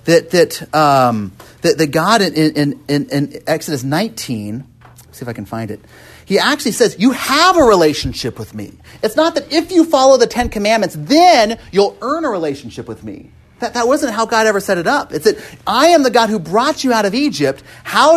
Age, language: 40-59, English